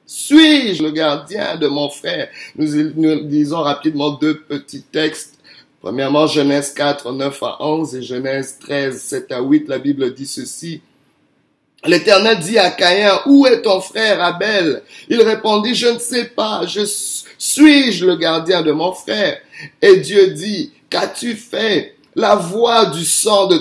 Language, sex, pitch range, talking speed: French, male, 155-225 Hz, 155 wpm